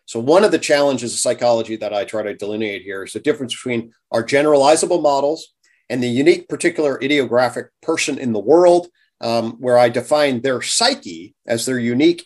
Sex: male